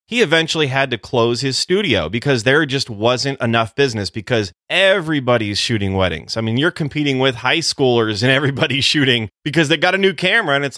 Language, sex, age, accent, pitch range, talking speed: English, male, 30-49, American, 115-155 Hz, 195 wpm